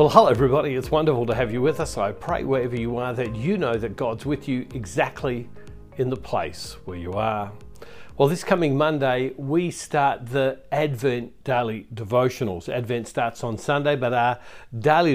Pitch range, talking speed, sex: 115-145 Hz, 180 wpm, male